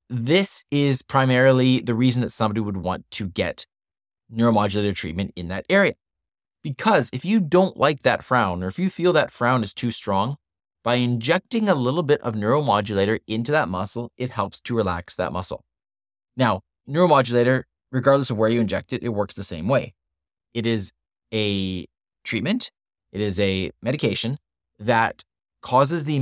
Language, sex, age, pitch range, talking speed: English, male, 20-39, 100-140 Hz, 165 wpm